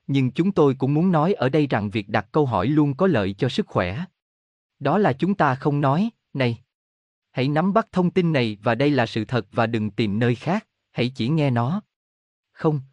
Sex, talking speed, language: male, 220 wpm, Vietnamese